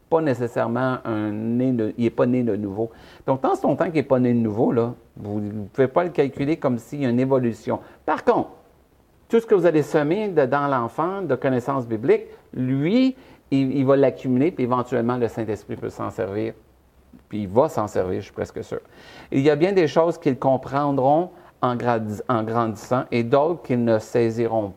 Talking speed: 210 wpm